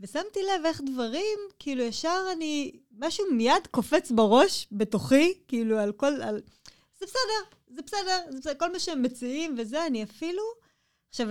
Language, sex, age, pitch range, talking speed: Hebrew, female, 20-39, 195-290 Hz, 160 wpm